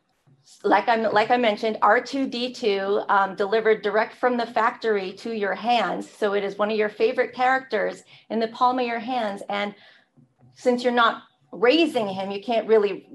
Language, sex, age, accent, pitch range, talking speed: English, female, 40-59, American, 210-250 Hz, 175 wpm